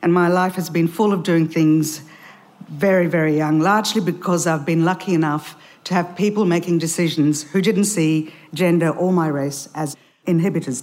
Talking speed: 175 wpm